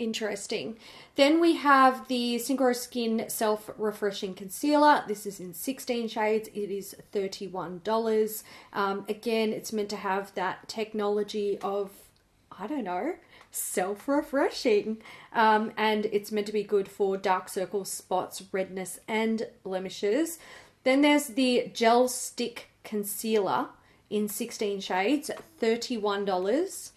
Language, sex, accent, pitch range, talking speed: English, female, Australian, 205-255 Hz, 125 wpm